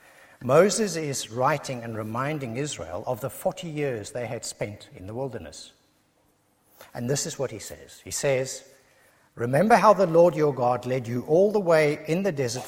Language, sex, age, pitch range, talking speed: English, male, 60-79, 125-175 Hz, 180 wpm